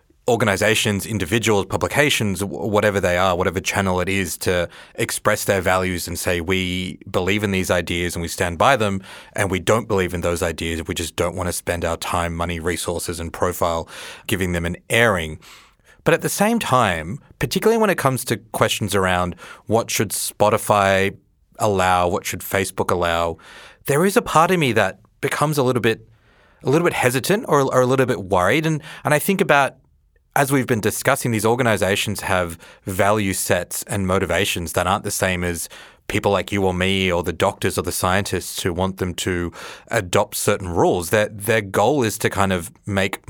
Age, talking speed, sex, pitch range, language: 30-49, 190 wpm, male, 90-115 Hz, English